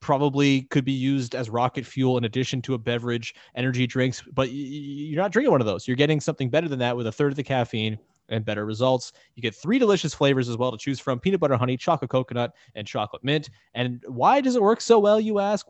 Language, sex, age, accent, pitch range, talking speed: English, male, 20-39, American, 125-160 Hz, 240 wpm